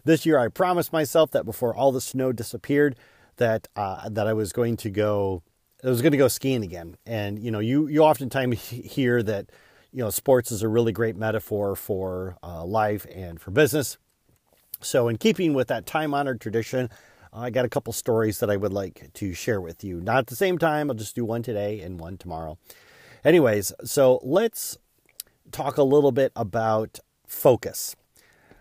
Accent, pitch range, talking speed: American, 110-140 Hz, 190 wpm